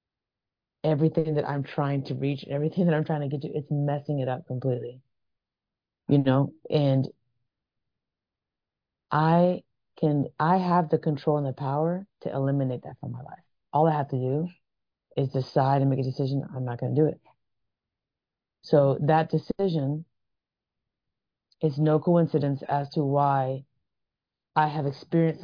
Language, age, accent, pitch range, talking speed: English, 30-49, American, 135-160 Hz, 155 wpm